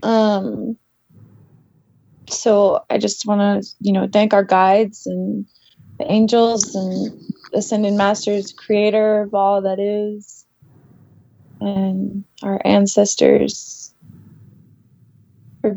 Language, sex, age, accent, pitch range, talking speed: English, female, 20-39, American, 140-205 Hz, 100 wpm